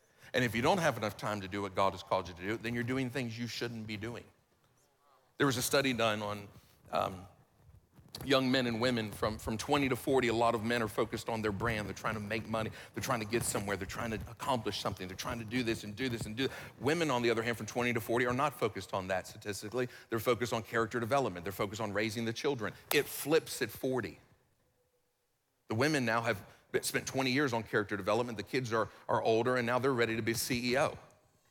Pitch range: 110-130 Hz